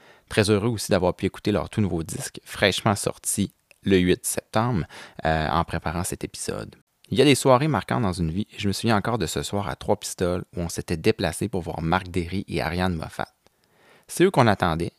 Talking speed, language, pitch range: 220 wpm, French, 85-100 Hz